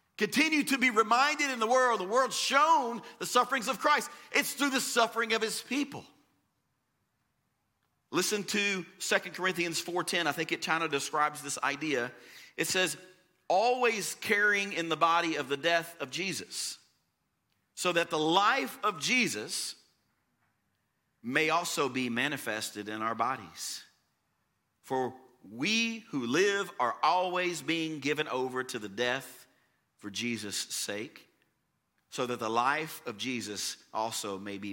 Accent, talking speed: American, 145 wpm